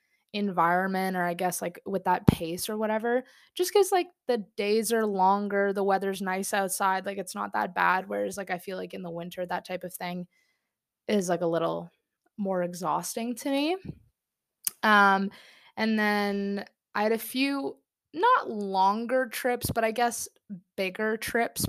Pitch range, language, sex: 185-230 Hz, English, female